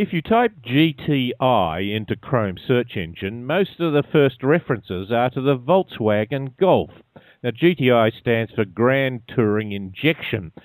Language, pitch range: English, 115-150 Hz